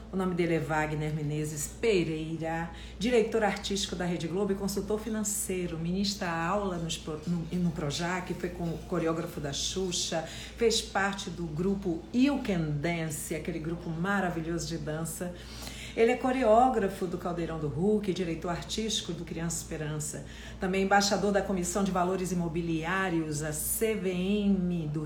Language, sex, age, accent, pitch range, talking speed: Portuguese, female, 50-69, Brazilian, 165-205 Hz, 135 wpm